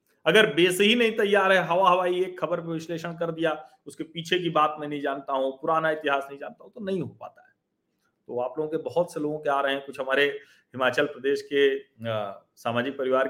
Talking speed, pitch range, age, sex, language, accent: 225 wpm, 115-160 Hz, 40-59, male, Hindi, native